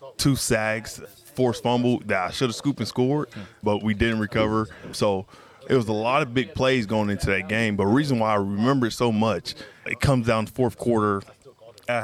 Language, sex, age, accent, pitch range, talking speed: English, male, 20-39, American, 105-120 Hz, 210 wpm